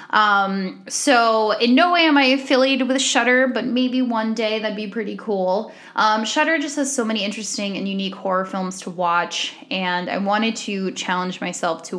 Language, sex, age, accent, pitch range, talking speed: English, female, 10-29, American, 200-260 Hz, 190 wpm